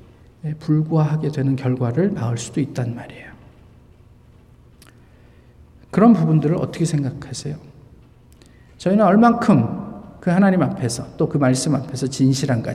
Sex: male